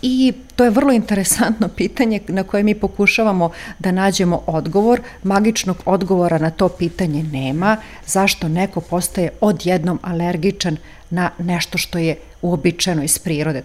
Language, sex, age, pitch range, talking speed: Croatian, female, 40-59, 165-205 Hz, 135 wpm